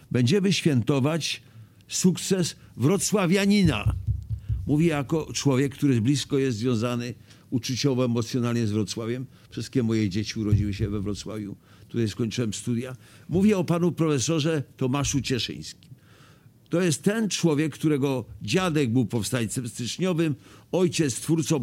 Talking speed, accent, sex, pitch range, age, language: 115 wpm, native, male, 120-165 Hz, 50-69, Polish